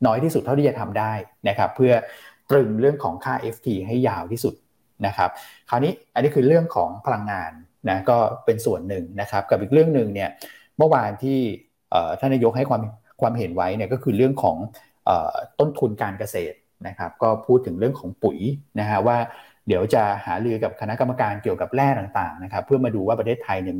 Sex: male